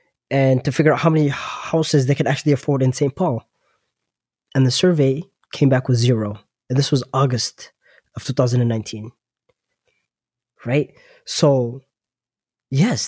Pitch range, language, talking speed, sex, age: 125-150 Hz, English, 140 wpm, male, 20-39